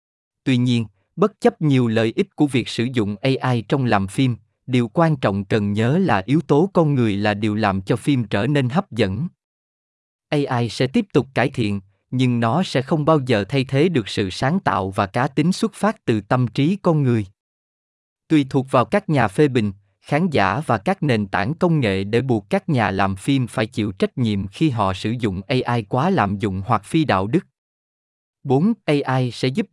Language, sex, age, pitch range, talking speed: Vietnamese, male, 20-39, 105-150 Hz, 210 wpm